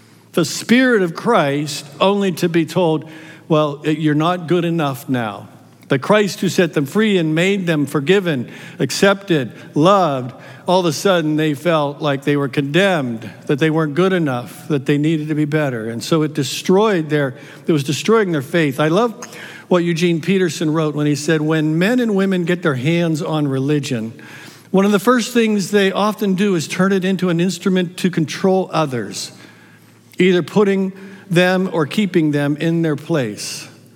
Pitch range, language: 140-180 Hz, English